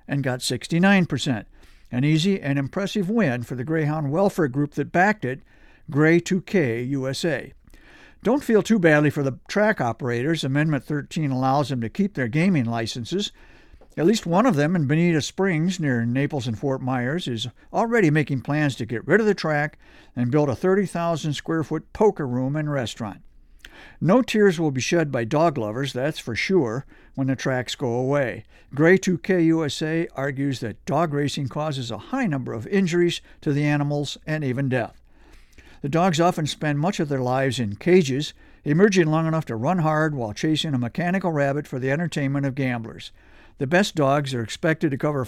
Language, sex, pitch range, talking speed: English, male, 130-170 Hz, 180 wpm